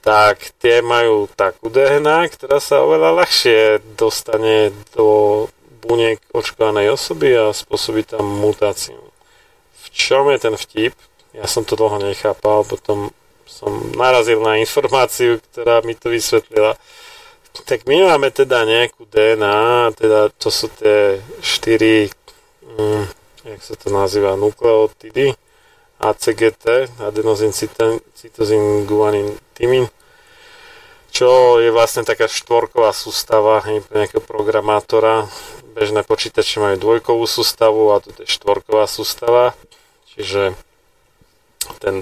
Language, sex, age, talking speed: Slovak, male, 40-59, 115 wpm